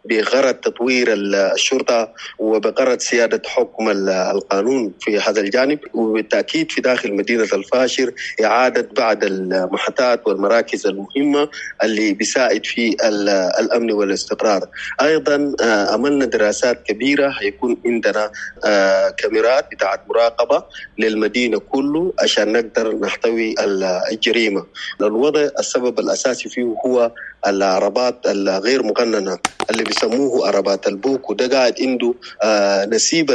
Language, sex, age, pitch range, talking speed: English, male, 30-49, 100-135 Hz, 100 wpm